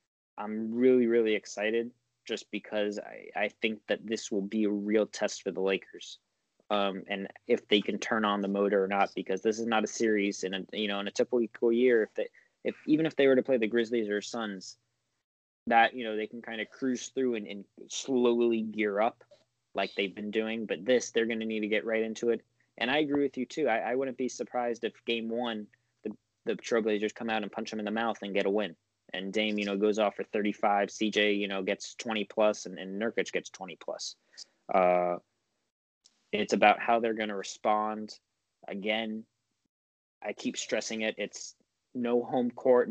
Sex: male